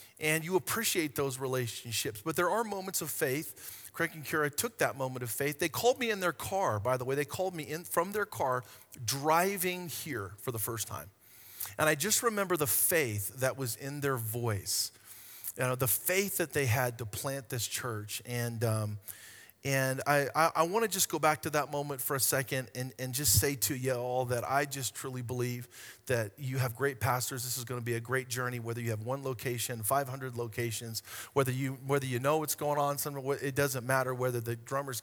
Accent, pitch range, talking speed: American, 120-150 Hz, 215 wpm